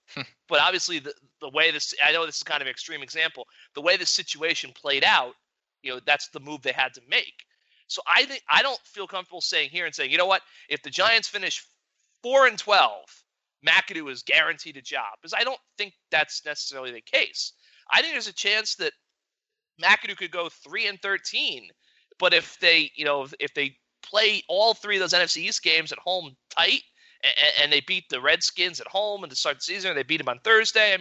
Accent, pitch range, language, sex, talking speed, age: American, 145-220 Hz, English, male, 215 wpm, 30-49